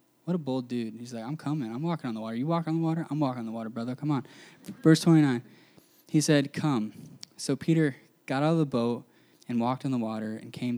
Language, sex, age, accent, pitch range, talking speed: English, male, 10-29, American, 120-150 Hz, 250 wpm